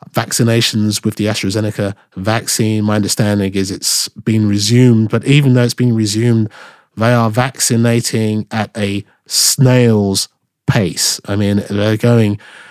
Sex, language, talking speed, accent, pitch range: male, English, 130 wpm, British, 105-130 Hz